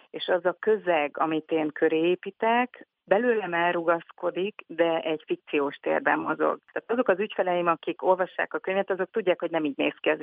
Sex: female